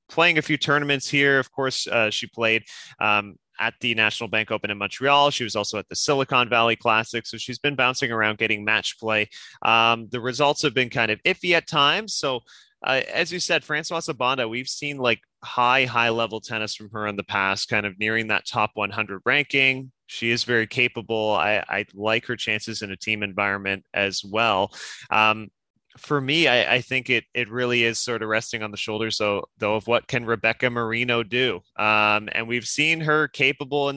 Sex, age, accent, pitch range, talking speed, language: male, 20-39, American, 110-130 Hz, 205 wpm, English